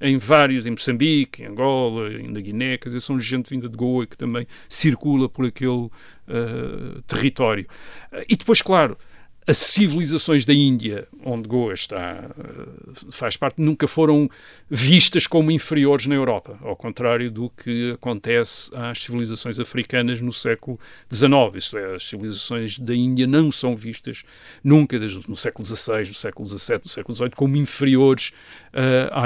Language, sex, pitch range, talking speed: Portuguese, male, 120-150 Hz, 150 wpm